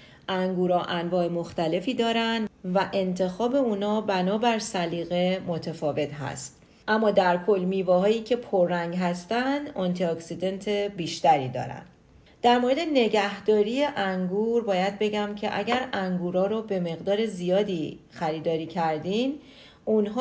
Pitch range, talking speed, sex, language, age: 175-215 Hz, 110 wpm, female, Persian, 40-59